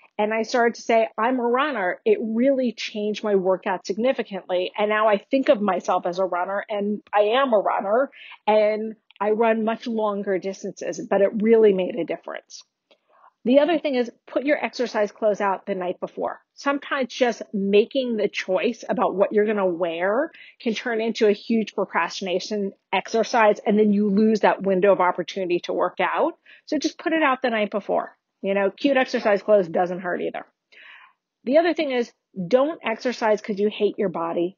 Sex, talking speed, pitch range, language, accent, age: female, 185 wpm, 195-240 Hz, English, American, 40-59